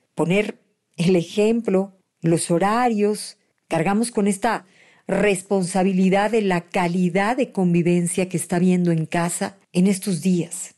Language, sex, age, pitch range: Spanish, female, 50-69, 185-230 Hz